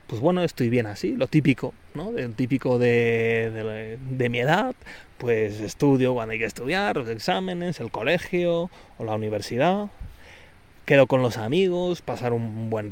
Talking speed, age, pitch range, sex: 155 wpm, 30-49, 115-155 Hz, male